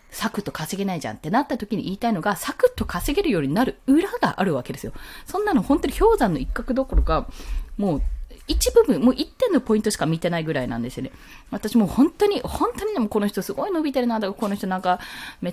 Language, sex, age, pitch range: Japanese, female, 20-39, 185-305 Hz